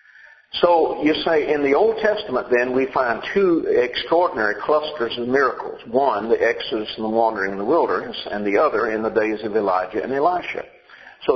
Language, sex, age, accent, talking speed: English, male, 50-69, American, 185 wpm